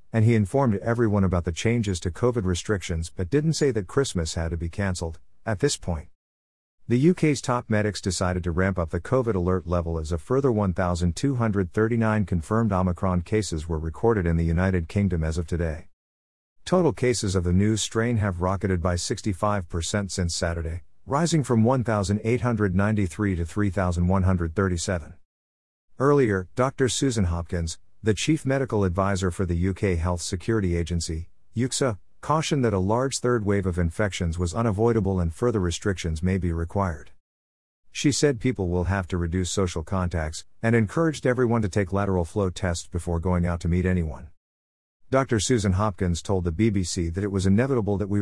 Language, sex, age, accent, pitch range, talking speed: English, male, 50-69, American, 85-115 Hz, 165 wpm